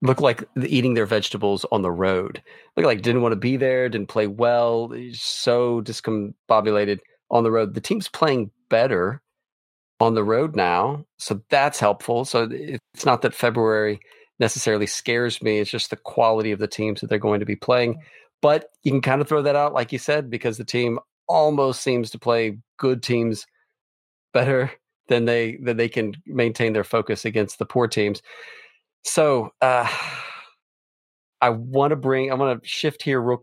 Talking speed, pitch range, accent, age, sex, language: 180 wpm, 105-130 Hz, American, 40-59, male, English